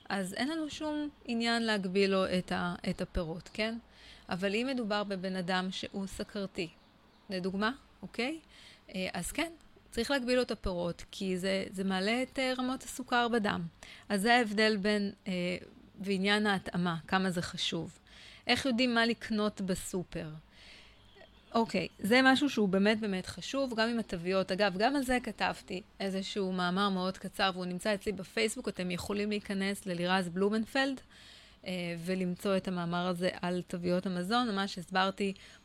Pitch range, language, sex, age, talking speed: 185-225 Hz, Hebrew, female, 30-49, 145 wpm